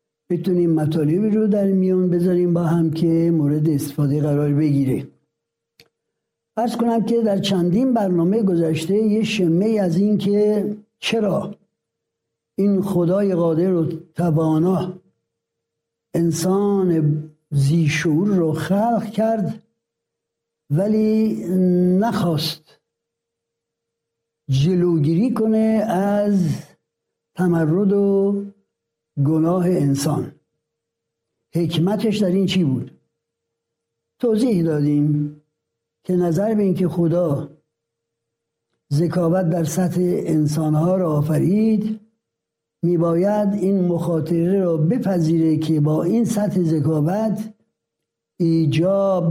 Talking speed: 90 wpm